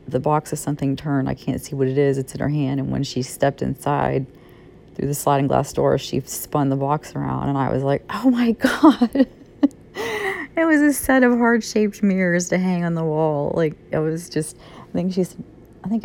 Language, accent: English, American